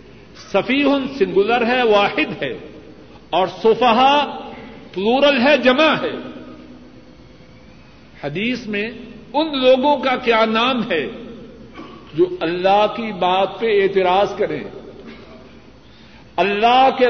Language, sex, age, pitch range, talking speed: Urdu, male, 60-79, 190-255 Hz, 100 wpm